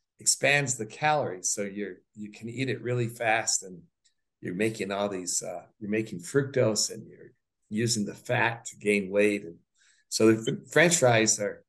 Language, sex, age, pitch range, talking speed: English, male, 60-79, 95-120 Hz, 170 wpm